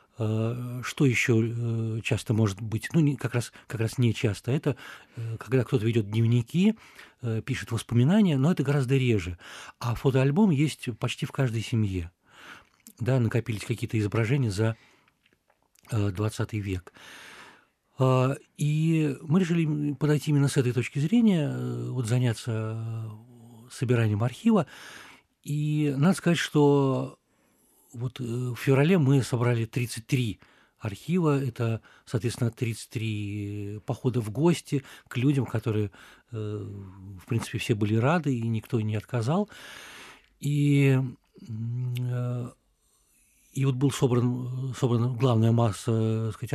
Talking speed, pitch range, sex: 115 wpm, 115-140 Hz, male